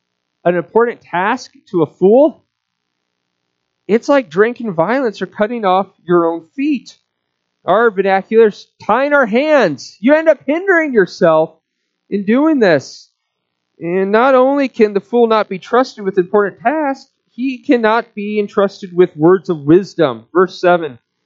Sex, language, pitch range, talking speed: male, English, 135-205 Hz, 145 wpm